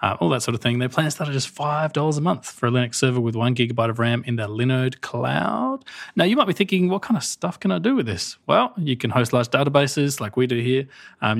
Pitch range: 120-145 Hz